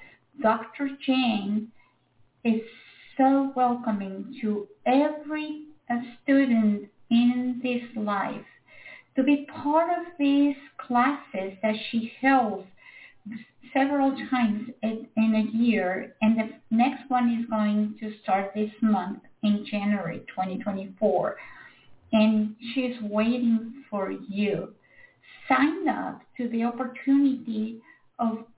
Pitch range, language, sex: 215-270 Hz, English, female